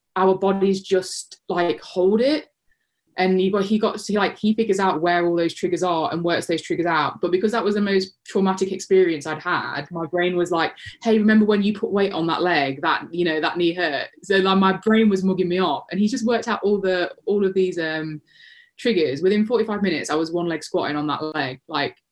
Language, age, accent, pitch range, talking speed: English, 20-39, British, 165-205 Hz, 235 wpm